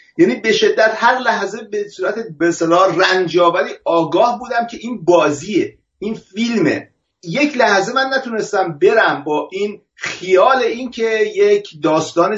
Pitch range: 165-245 Hz